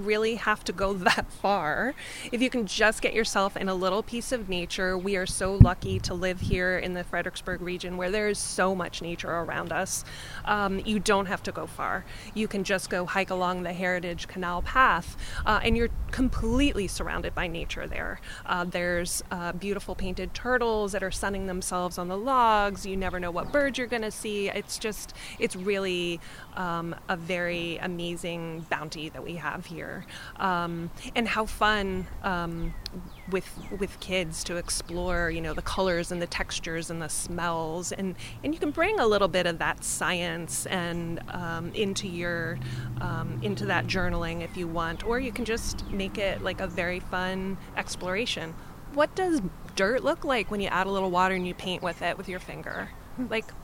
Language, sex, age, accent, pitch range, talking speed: English, female, 20-39, American, 175-225 Hz, 190 wpm